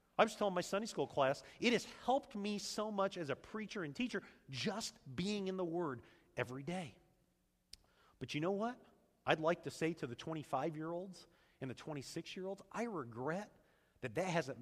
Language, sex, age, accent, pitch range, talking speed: English, male, 40-59, American, 135-225 Hz, 180 wpm